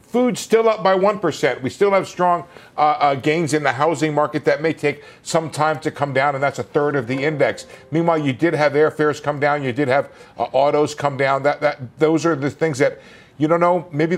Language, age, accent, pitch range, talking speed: English, 50-69, American, 140-170 Hz, 235 wpm